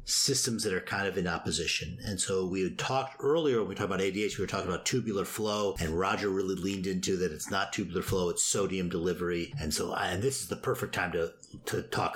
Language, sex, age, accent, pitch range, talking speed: English, male, 50-69, American, 95-130 Hz, 235 wpm